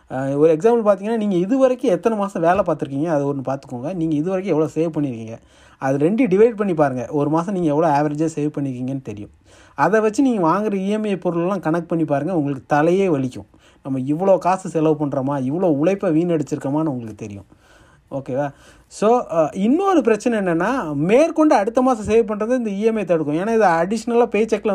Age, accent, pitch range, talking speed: 30-49, native, 140-210 Hz, 170 wpm